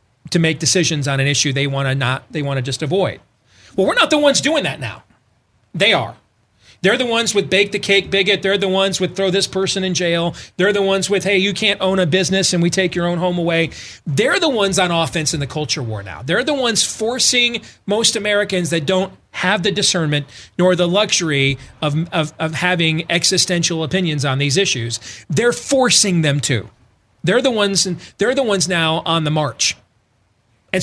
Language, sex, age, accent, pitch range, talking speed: English, male, 40-59, American, 145-200 Hz, 210 wpm